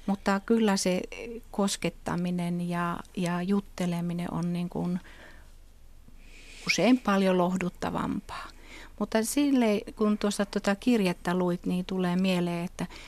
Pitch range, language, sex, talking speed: 175-200 Hz, Finnish, female, 90 wpm